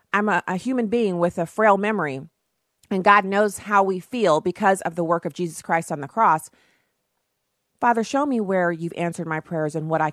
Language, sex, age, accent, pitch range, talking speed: English, female, 40-59, American, 170-255 Hz, 215 wpm